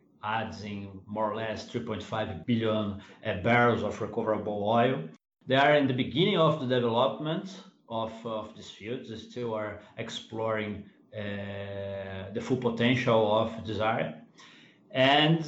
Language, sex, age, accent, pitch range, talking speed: English, male, 30-49, Brazilian, 110-140 Hz, 140 wpm